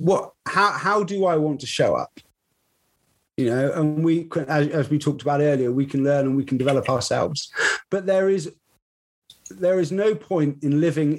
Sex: male